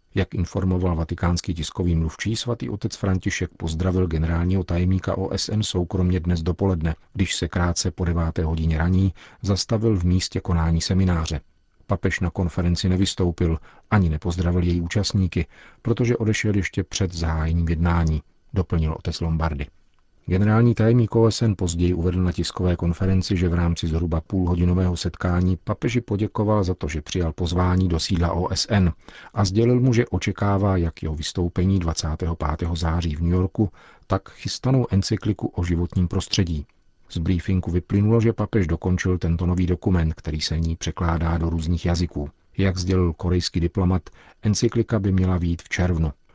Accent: native